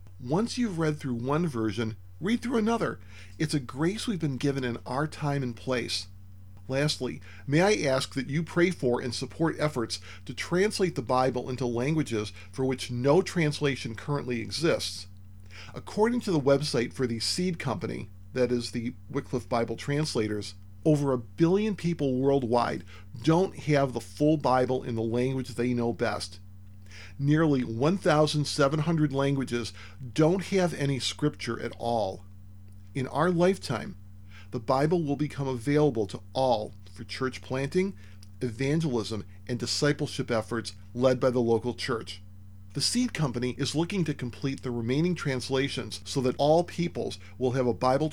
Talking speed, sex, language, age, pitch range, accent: 150 wpm, male, English, 40-59, 110-150 Hz, American